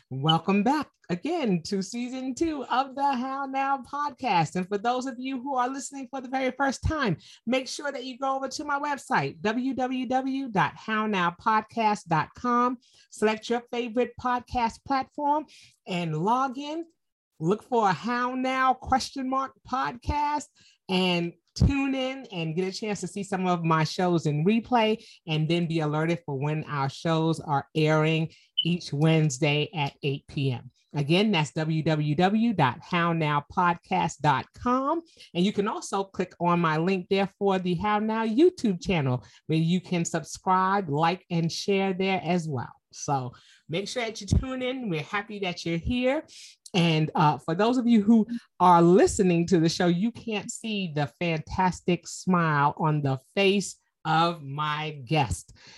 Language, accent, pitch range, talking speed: English, American, 160-250 Hz, 155 wpm